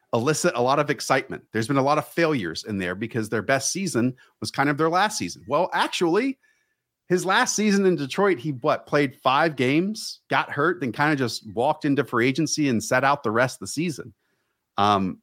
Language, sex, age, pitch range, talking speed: English, male, 40-59, 110-160 Hz, 215 wpm